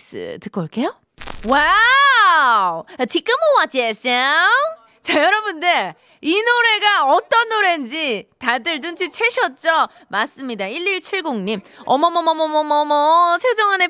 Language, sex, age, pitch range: Korean, female, 20-39, 270-435 Hz